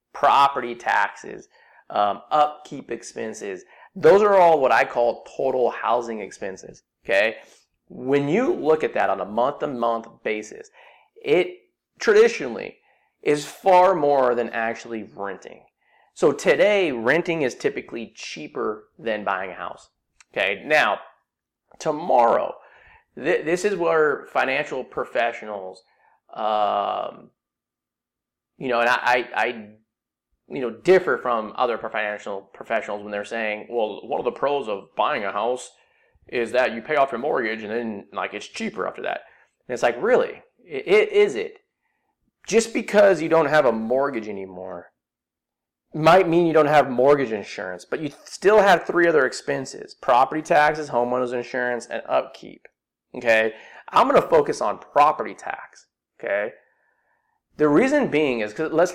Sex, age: male, 30-49